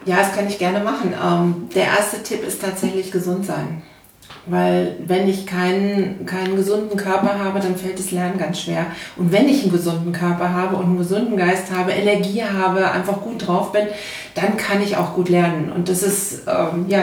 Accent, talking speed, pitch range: German, 195 wpm, 175-195 Hz